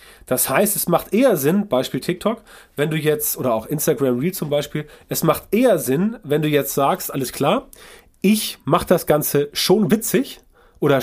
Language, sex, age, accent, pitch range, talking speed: German, male, 30-49, German, 145-185 Hz, 185 wpm